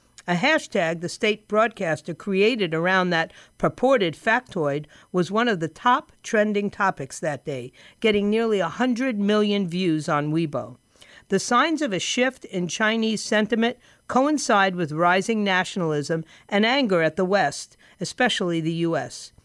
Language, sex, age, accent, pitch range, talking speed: English, female, 50-69, American, 170-225 Hz, 140 wpm